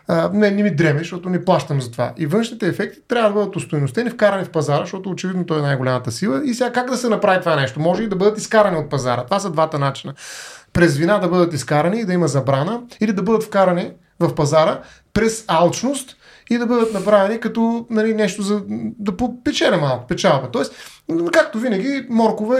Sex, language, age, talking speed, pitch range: male, Bulgarian, 30-49, 205 wpm, 155-215 Hz